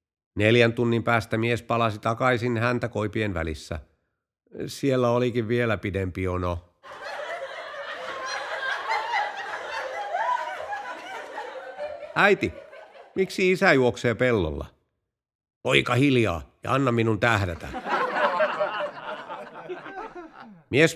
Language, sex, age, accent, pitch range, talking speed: Finnish, male, 50-69, native, 105-140 Hz, 75 wpm